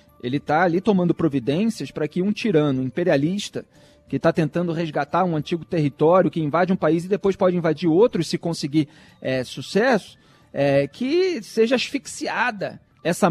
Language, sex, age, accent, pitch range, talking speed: Portuguese, male, 40-59, Brazilian, 145-185 Hz, 150 wpm